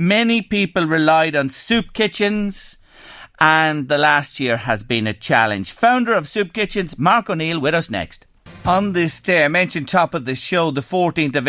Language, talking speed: English, 185 wpm